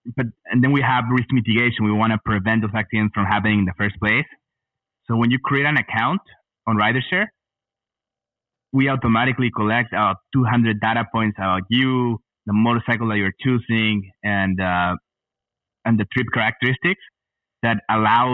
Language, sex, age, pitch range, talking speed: English, male, 20-39, 105-120 Hz, 160 wpm